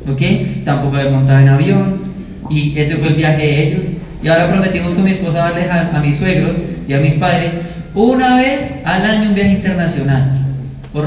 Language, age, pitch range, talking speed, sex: Spanish, 30-49, 150-190 Hz, 195 wpm, male